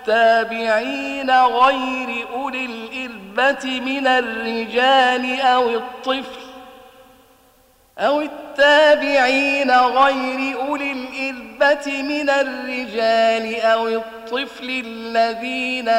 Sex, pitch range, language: male, 230-265 Hz, Arabic